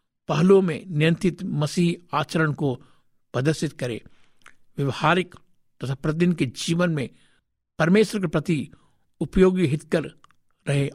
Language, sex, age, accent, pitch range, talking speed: Hindi, male, 60-79, native, 135-175 Hz, 115 wpm